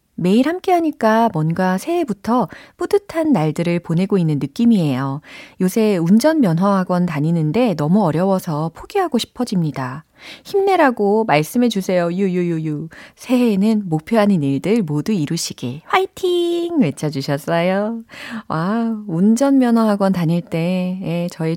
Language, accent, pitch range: Korean, native, 165-240 Hz